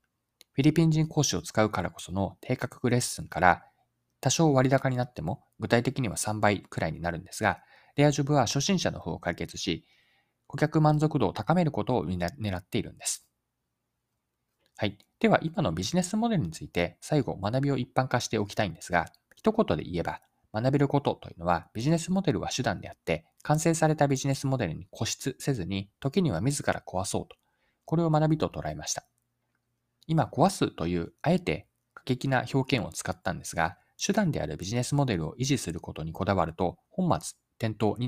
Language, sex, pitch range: Japanese, male, 90-145 Hz